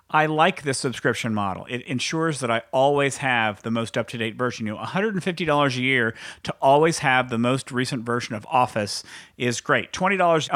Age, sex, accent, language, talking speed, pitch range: 40-59, male, American, English, 180 wpm, 115-145 Hz